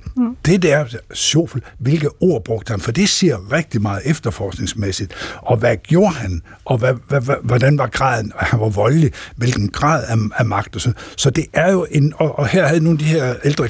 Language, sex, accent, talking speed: Danish, male, native, 215 wpm